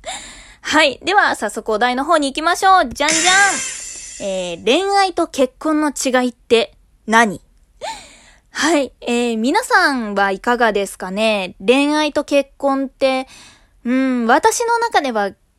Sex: female